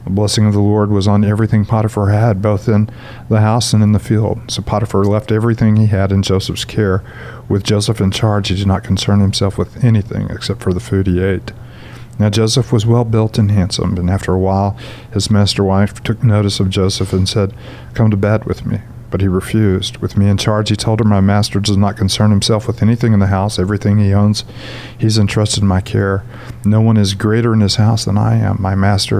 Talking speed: 225 wpm